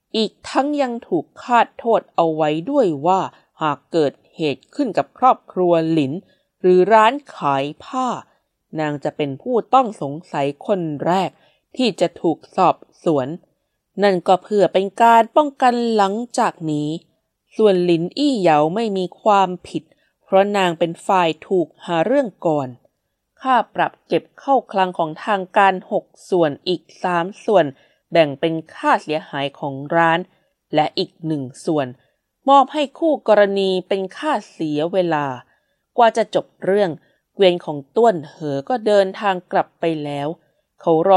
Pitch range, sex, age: 160-215 Hz, female, 20-39